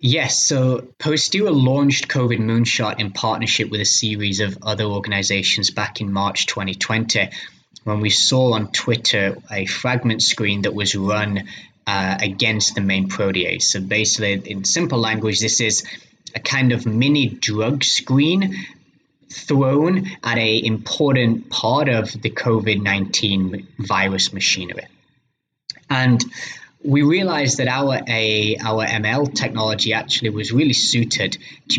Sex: male